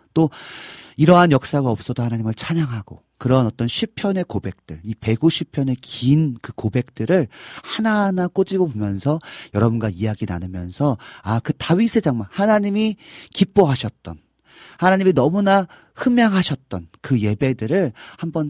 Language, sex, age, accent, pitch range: Korean, male, 40-59, native, 105-160 Hz